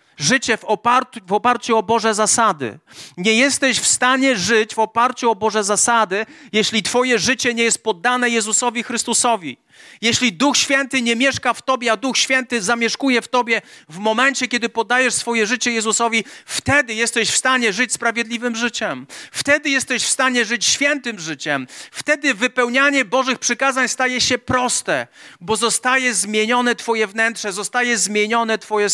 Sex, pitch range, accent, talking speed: male, 200-250 Hz, native, 155 wpm